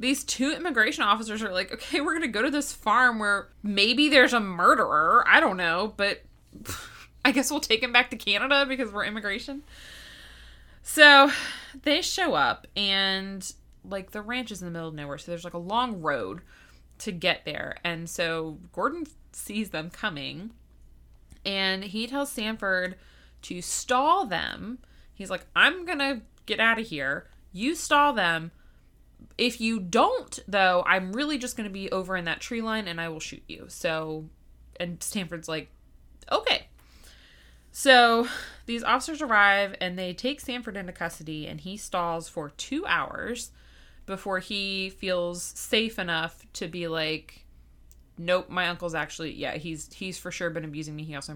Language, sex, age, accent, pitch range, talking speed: English, female, 20-39, American, 170-250 Hz, 170 wpm